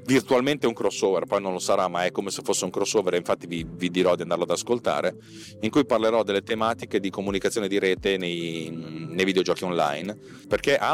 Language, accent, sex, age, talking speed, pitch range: Italian, native, male, 30-49, 210 wpm, 90-115 Hz